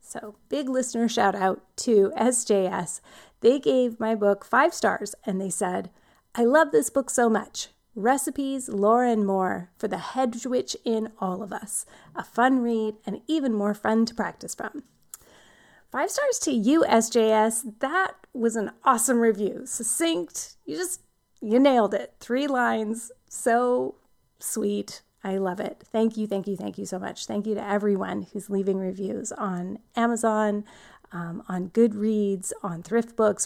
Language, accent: English, American